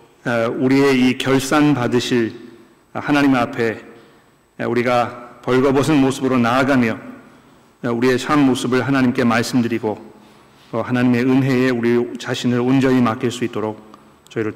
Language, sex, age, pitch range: Korean, male, 40-59, 120-155 Hz